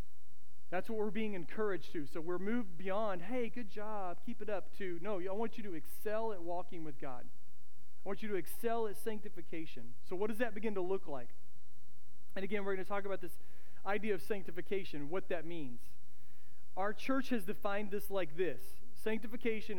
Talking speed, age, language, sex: 190 wpm, 40-59, English, male